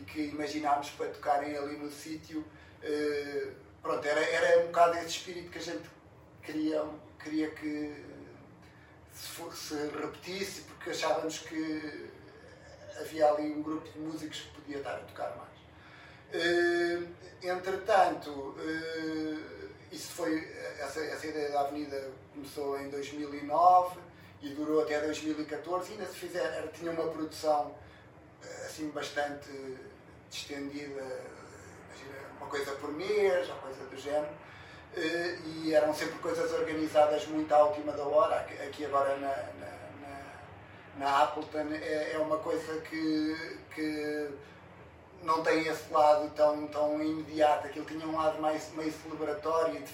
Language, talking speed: Portuguese, 135 wpm